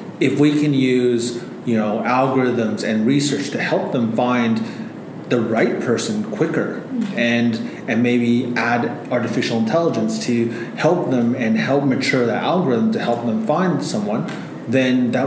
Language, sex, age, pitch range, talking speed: English, male, 30-49, 115-135 Hz, 150 wpm